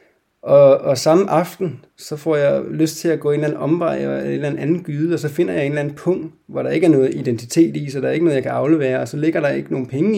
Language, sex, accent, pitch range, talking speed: Danish, male, native, 130-160 Hz, 295 wpm